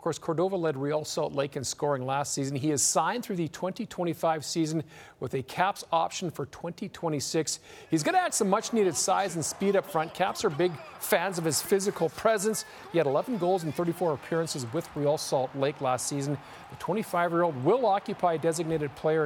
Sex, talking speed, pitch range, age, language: male, 205 wpm, 150-200 Hz, 50-69, English